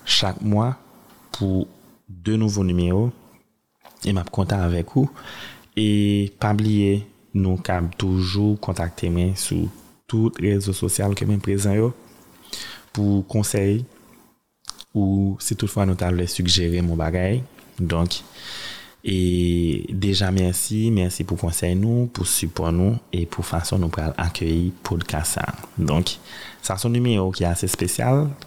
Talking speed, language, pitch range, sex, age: 145 wpm, French, 85-105 Hz, male, 30-49